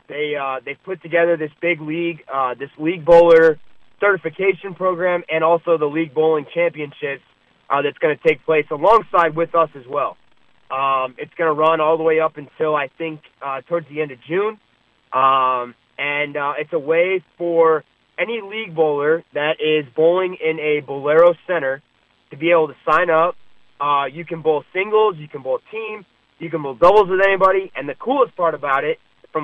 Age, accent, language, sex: 30-49, American, English, male